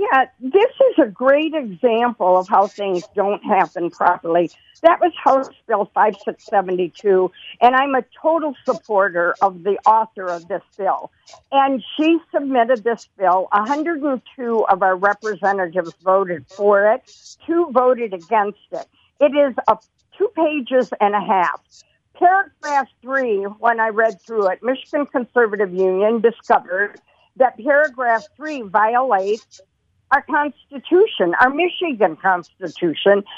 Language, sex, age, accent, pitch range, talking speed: English, female, 50-69, American, 200-285 Hz, 135 wpm